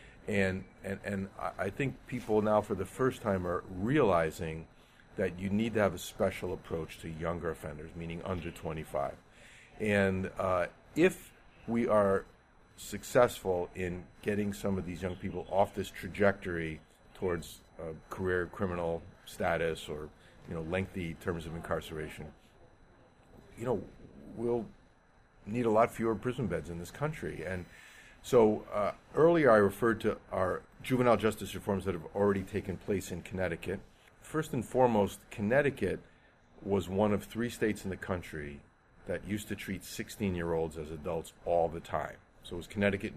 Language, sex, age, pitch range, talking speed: English, male, 50-69, 85-105 Hz, 155 wpm